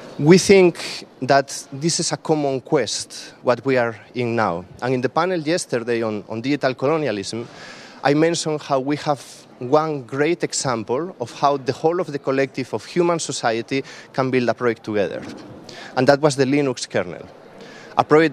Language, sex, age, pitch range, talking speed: English, male, 30-49, 120-145 Hz, 175 wpm